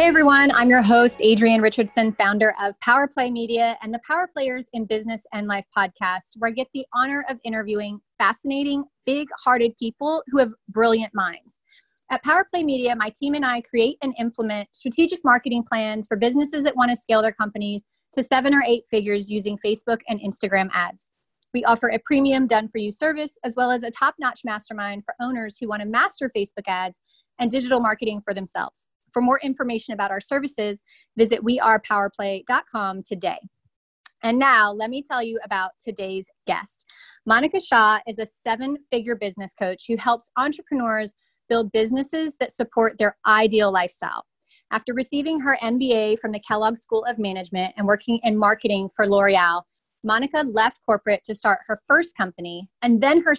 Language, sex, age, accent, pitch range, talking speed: English, female, 30-49, American, 210-260 Hz, 170 wpm